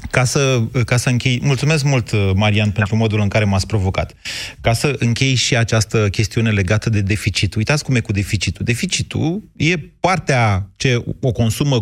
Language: Romanian